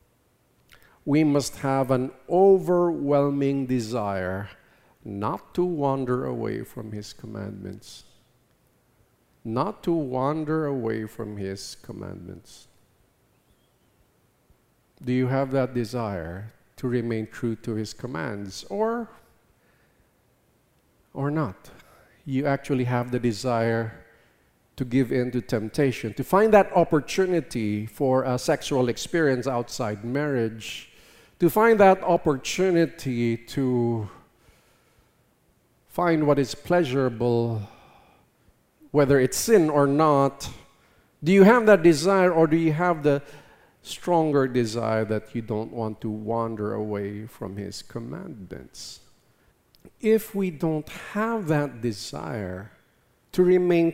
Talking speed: 110 wpm